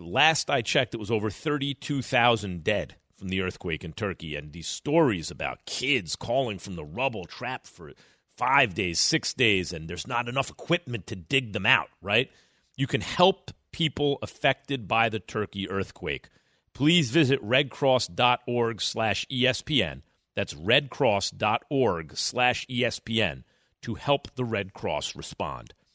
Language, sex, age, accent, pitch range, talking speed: English, male, 40-59, American, 105-150 Hz, 145 wpm